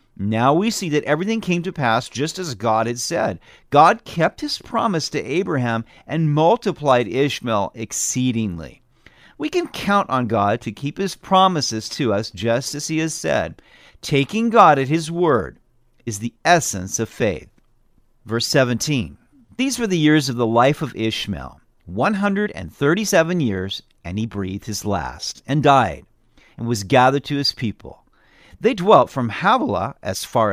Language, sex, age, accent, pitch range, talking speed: English, male, 50-69, American, 110-160 Hz, 160 wpm